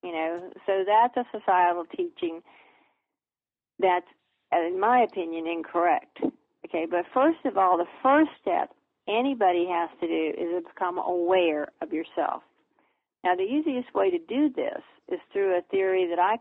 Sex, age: female, 50-69